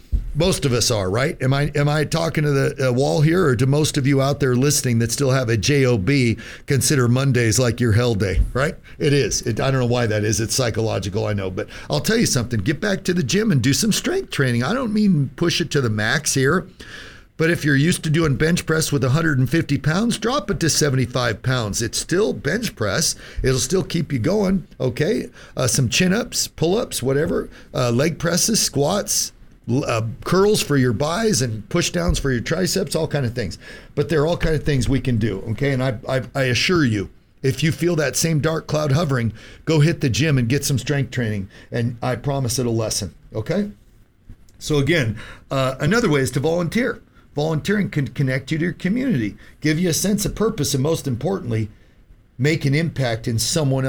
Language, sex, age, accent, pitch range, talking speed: English, male, 50-69, American, 120-160 Hz, 215 wpm